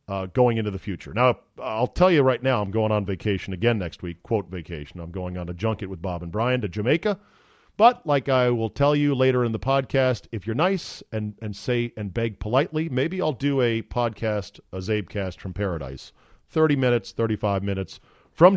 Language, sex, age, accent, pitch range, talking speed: English, male, 40-59, American, 100-130 Hz, 210 wpm